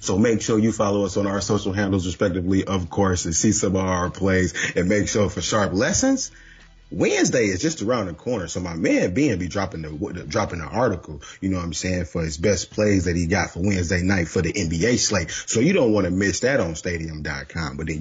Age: 30-49